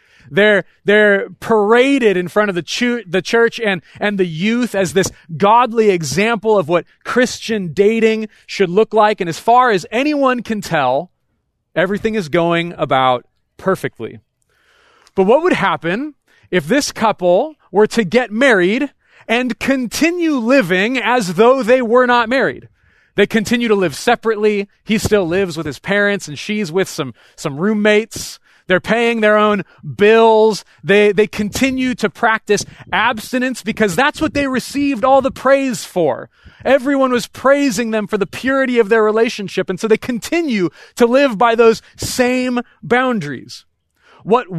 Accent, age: American, 30-49